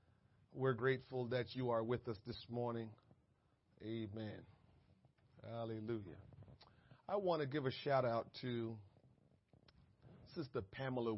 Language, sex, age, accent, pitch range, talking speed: English, male, 40-59, American, 115-140 Hz, 105 wpm